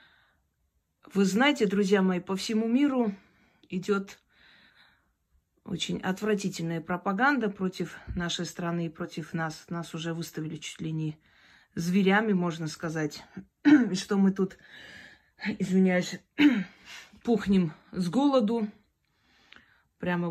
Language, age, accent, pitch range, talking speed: Russian, 30-49, native, 165-205 Hz, 100 wpm